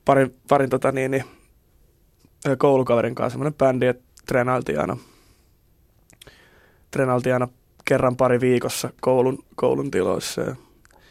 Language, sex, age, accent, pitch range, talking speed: Finnish, male, 20-39, native, 125-140 Hz, 95 wpm